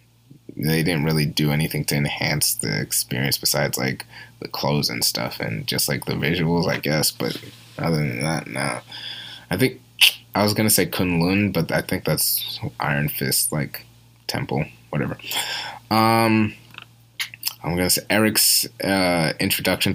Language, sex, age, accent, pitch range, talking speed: English, male, 20-39, American, 85-120 Hz, 150 wpm